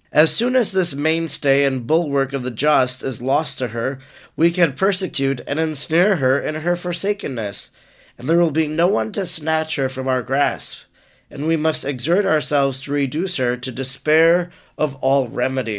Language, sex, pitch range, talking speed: English, male, 135-170 Hz, 180 wpm